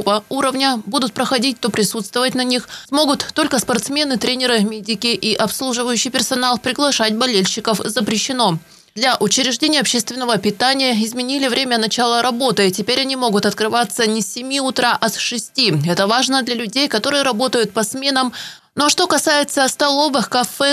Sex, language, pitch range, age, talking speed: female, Russian, 235-275 Hz, 20-39, 145 wpm